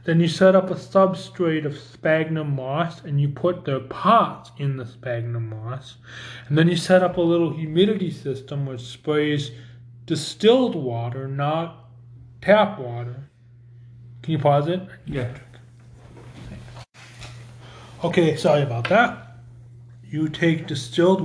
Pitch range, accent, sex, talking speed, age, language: 120-155 Hz, American, male, 130 wpm, 20-39, English